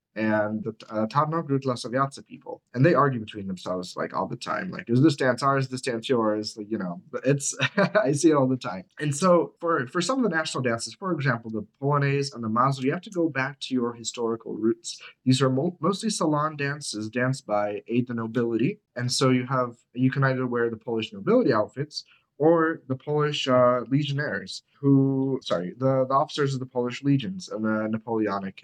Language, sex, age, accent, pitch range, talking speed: English, male, 30-49, American, 115-155 Hz, 205 wpm